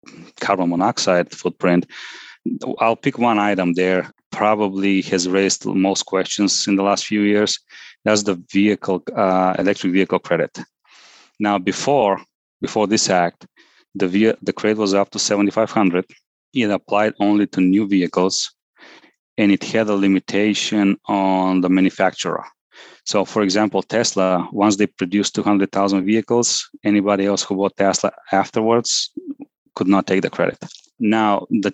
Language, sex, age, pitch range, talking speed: English, male, 30-49, 95-105 Hz, 145 wpm